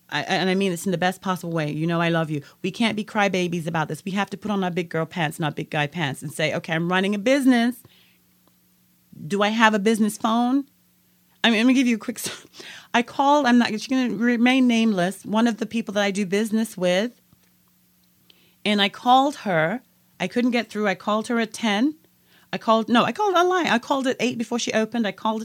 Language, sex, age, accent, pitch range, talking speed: English, female, 30-49, American, 185-255 Hz, 240 wpm